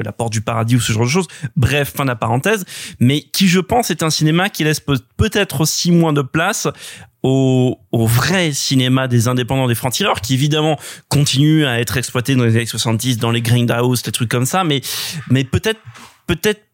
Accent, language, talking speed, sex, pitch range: French, French, 205 wpm, male, 125-165 Hz